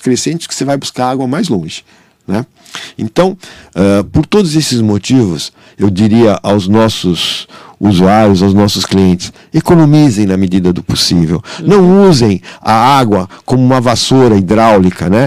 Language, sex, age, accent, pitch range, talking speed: Portuguese, male, 50-69, Brazilian, 110-155 Hz, 140 wpm